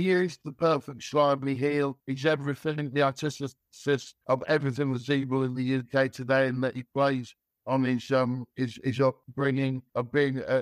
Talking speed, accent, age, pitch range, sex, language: 175 wpm, British, 60-79, 125-140 Hz, male, English